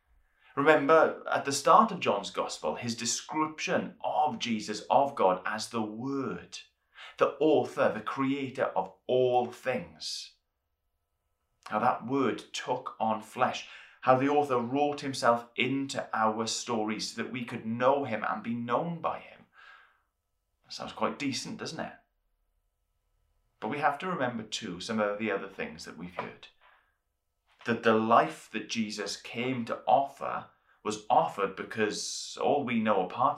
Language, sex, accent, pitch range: English, male, British, 85-125 Hz